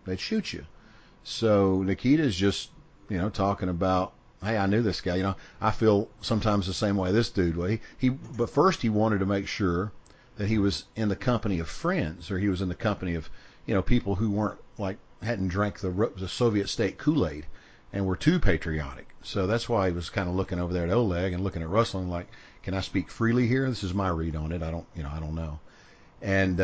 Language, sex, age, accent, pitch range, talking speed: English, male, 50-69, American, 90-110 Hz, 235 wpm